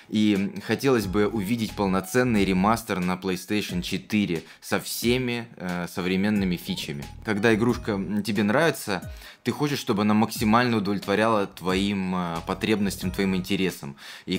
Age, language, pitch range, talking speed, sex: 20-39, Russian, 95-110 Hz, 125 wpm, male